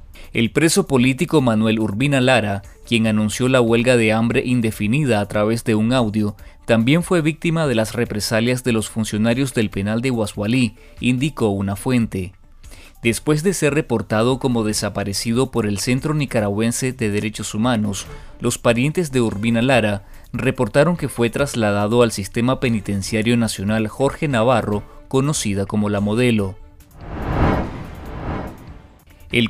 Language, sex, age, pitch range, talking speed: Spanish, male, 30-49, 105-130 Hz, 135 wpm